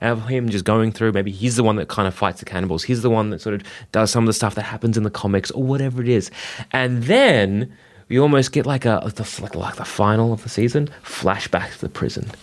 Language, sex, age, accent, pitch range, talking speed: English, male, 30-49, Australian, 100-130 Hz, 255 wpm